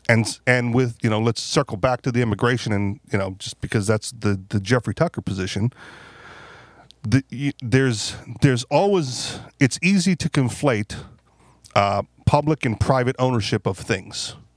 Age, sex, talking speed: 40-59, male, 155 wpm